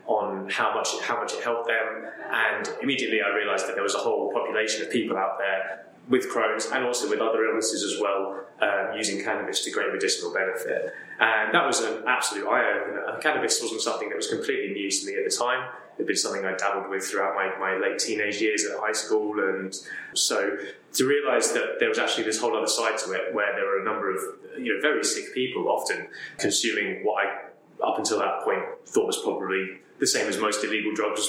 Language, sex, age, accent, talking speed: English, male, 20-39, British, 225 wpm